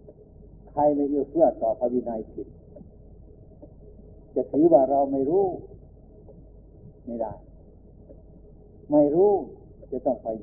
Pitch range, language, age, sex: 100-150 Hz, Thai, 60-79, male